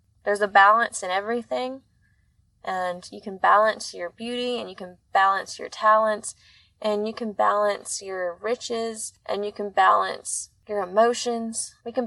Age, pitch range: 20-39, 190-230 Hz